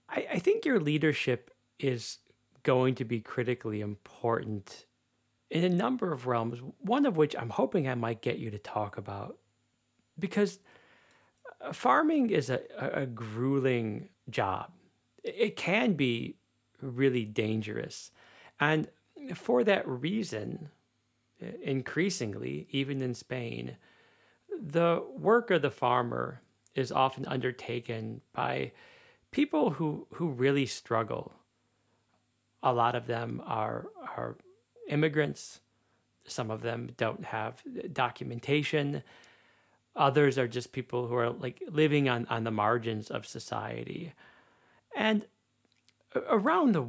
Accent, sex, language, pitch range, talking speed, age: American, male, English, 115-150 Hz, 115 wpm, 40-59